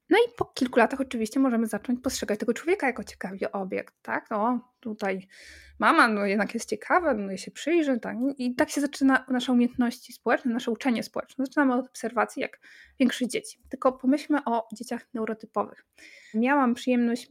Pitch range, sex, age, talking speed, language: 225-270 Hz, female, 20-39, 175 wpm, Polish